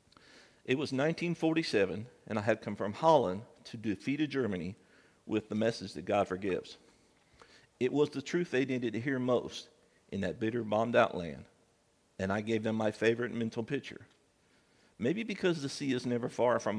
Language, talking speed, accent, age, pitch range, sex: English, 170 wpm, American, 50-69, 95-125 Hz, male